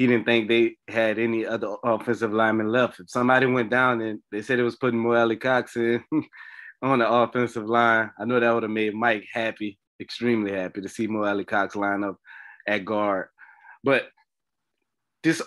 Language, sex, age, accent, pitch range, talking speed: English, male, 20-39, American, 100-120 Hz, 180 wpm